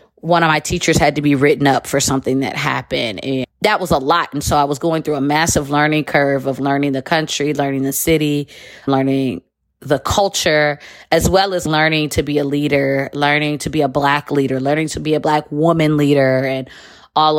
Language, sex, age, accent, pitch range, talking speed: English, female, 20-39, American, 145-180 Hz, 210 wpm